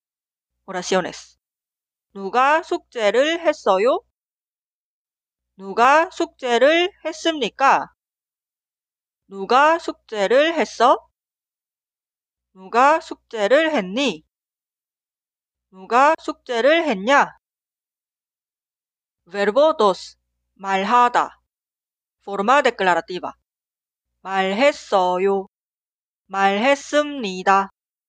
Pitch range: 195-290 Hz